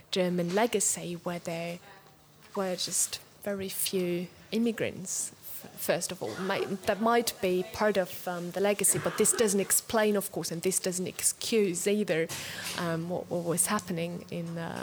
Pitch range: 175-195 Hz